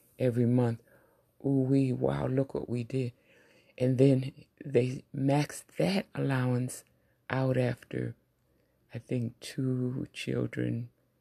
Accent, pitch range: American, 115-130 Hz